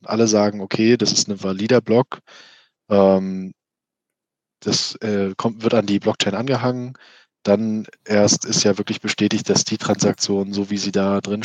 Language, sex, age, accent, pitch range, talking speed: German, male, 20-39, German, 100-120 Hz, 160 wpm